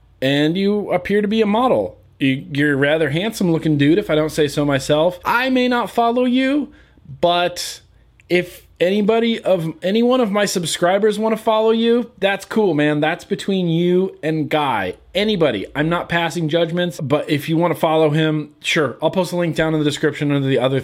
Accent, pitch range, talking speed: American, 145-200 Hz, 200 wpm